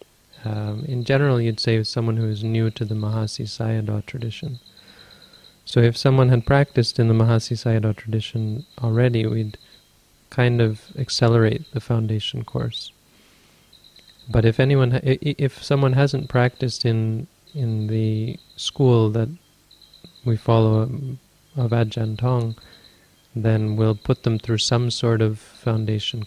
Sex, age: male, 30-49